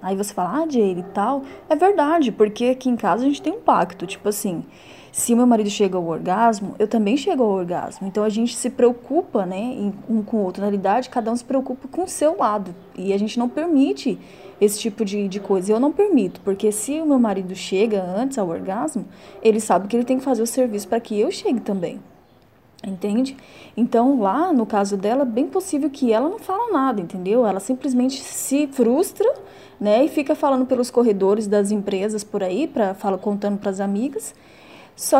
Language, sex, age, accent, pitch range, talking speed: Portuguese, female, 20-39, Brazilian, 200-260 Hz, 210 wpm